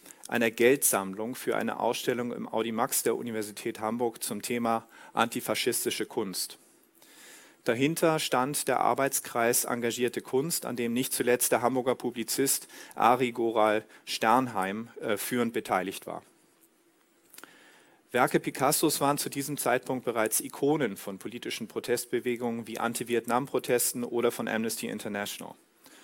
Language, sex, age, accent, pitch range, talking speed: German, male, 40-59, German, 115-145 Hz, 115 wpm